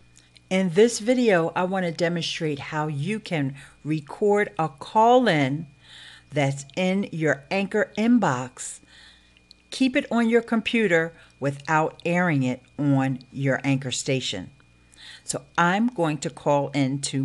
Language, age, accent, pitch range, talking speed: English, 50-69, American, 105-175 Hz, 125 wpm